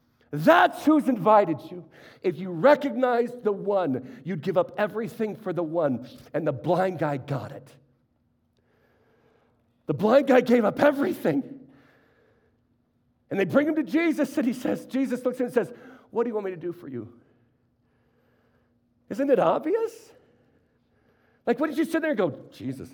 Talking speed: 165 wpm